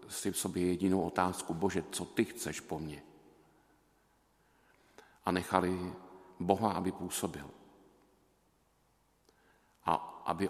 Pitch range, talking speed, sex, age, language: 85-95 Hz, 105 wpm, male, 50-69, Slovak